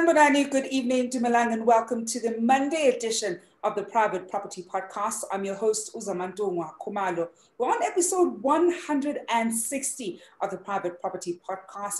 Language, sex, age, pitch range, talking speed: English, female, 30-49, 180-230 Hz, 140 wpm